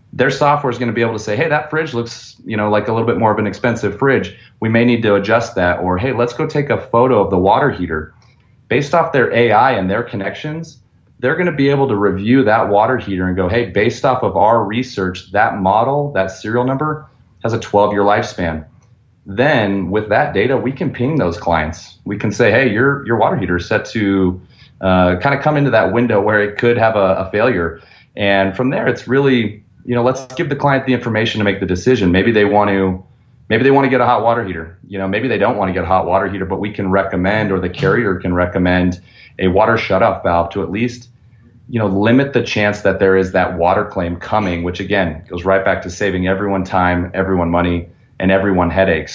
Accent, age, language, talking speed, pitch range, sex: American, 30-49, English, 235 wpm, 95-120 Hz, male